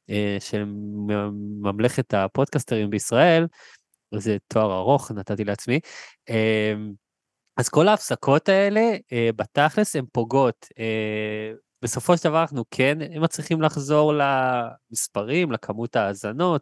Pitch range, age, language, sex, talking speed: 110-155 Hz, 20-39, Hebrew, male, 100 wpm